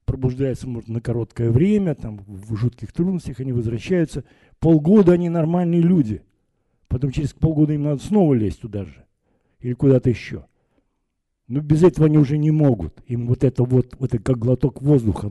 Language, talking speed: Russian, 170 wpm